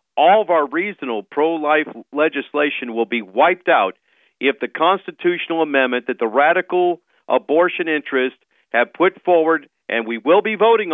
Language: English